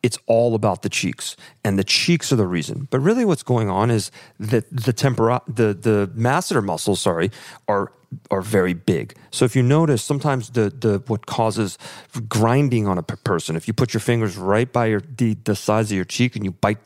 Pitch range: 105-140 Hz